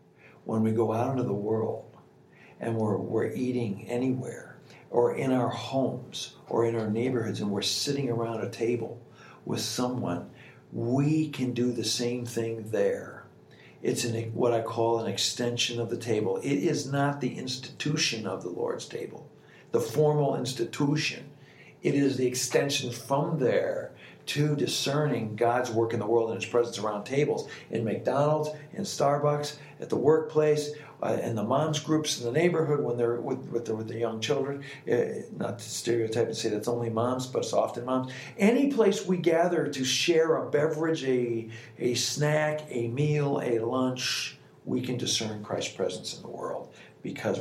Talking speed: 170 wpm